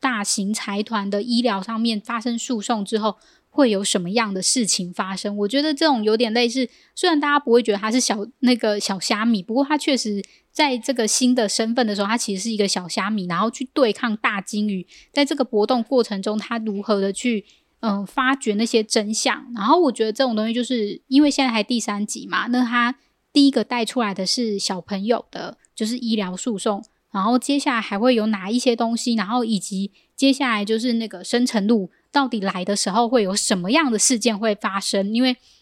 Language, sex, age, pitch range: Chinese, female, 20-39, 210-250 Hz